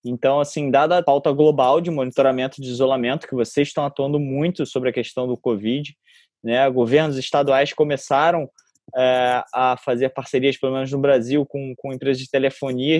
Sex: male